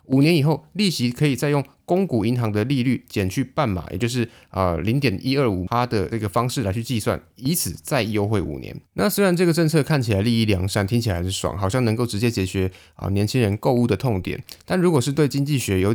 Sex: male